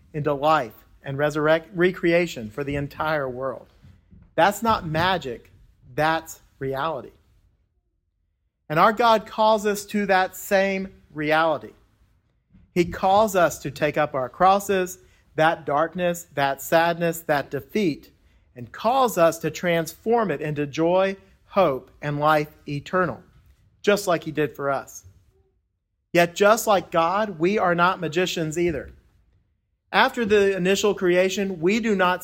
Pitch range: 135-190 Hz